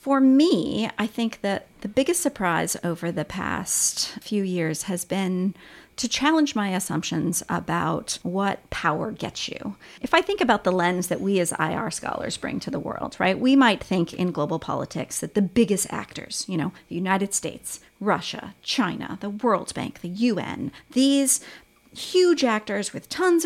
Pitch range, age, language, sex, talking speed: 185-275 Hz, 40-59, English, female, 170 wpm